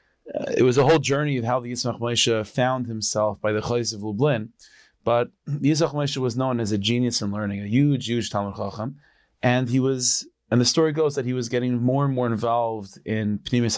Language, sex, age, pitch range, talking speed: English, male, 30-49, 110-135 Hz, 220 wpm